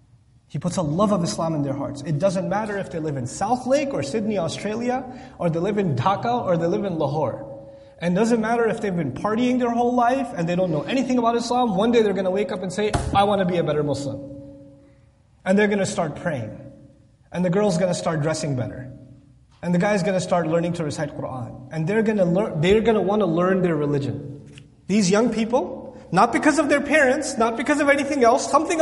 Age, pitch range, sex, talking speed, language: 30-49, 155-240 Hz, male, 225 wpm, English